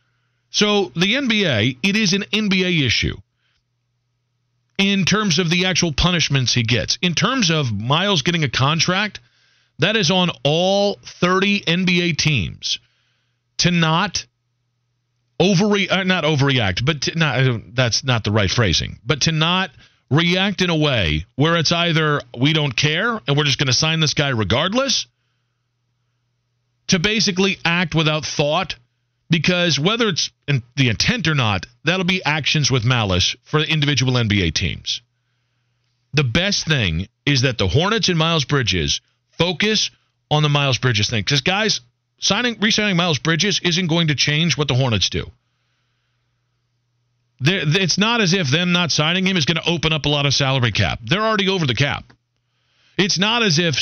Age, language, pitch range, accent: 40-59, English, 120-180 Hz, American